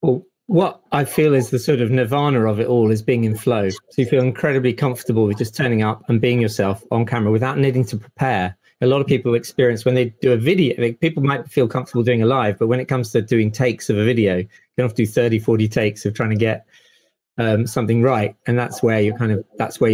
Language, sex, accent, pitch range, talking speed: English, male, British, 110-130 Hz, 255 wpm